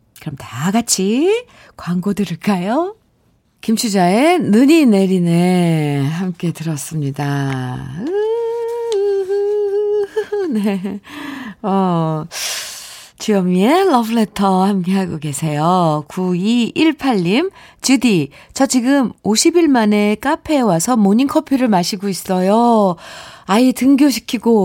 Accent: native